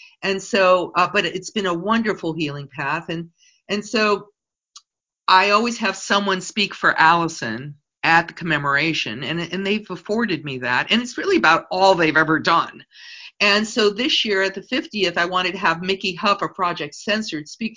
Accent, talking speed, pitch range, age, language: American, 180 wpm, 170-225 Hz, 50-69, English